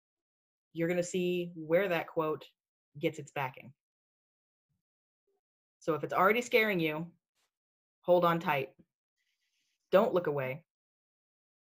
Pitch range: 165-210 Hz